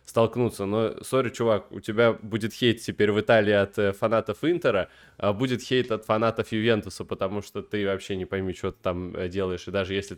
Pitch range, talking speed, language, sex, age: 95-110 Hz, 200 wpm, Russian, male, 20-39